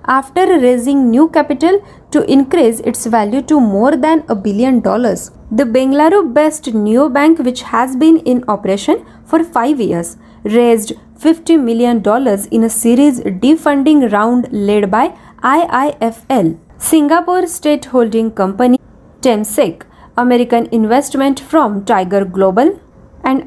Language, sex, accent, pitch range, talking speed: Marathi, female, native, 230-290 Hz, 130 wpm